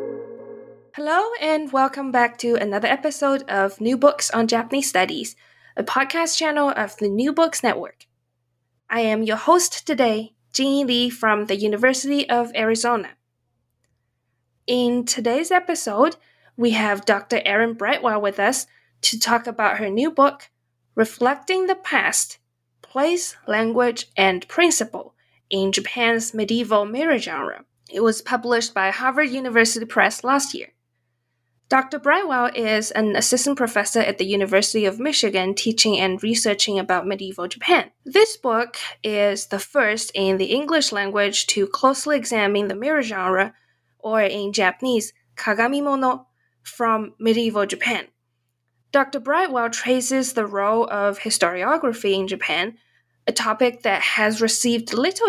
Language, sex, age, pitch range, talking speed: English, female, 20-39, 200-265 Hz, 135 wpm